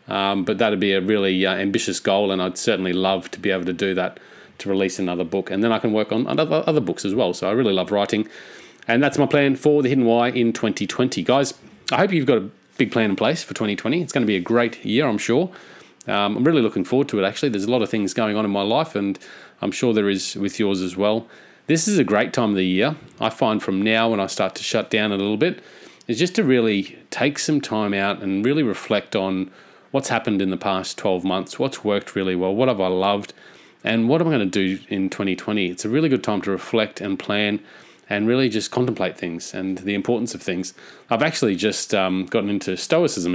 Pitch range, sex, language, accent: 95-115 Hz, male, English, Australian